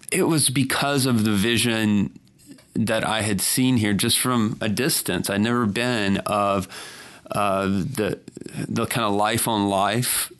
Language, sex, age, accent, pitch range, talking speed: English, male, 30-49, American, 95-115 Hz, 155 wpm